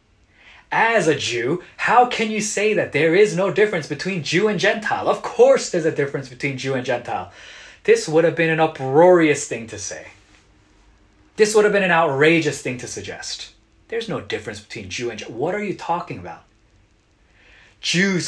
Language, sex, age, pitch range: Korean, male, 20-39, 145-215 Hz